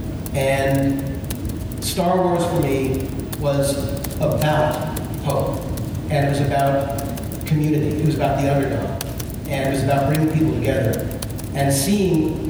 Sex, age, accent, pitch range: male, 40-59, American, 130-150 Hz